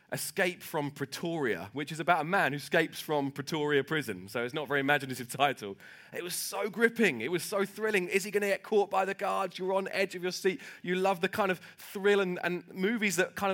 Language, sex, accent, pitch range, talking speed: English, male, British, 110-155 Hz, 230 wpm